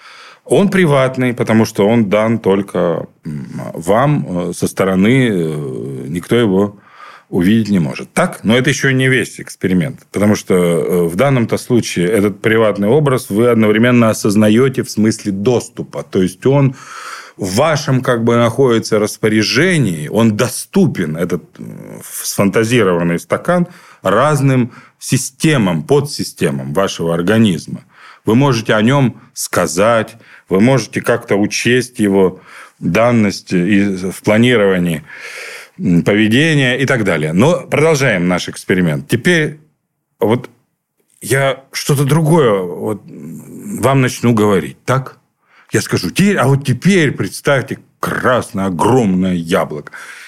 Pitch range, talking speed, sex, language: 100-135 Hz, 115 wpm, male, Russian